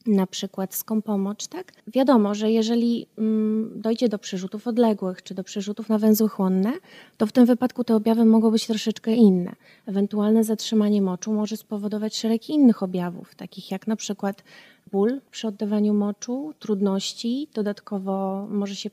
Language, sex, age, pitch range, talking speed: Polish, female, 30-49, 200-230 Hz, 150 wpm